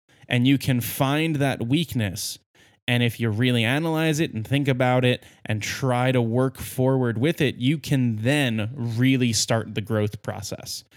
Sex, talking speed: male, 170 wpm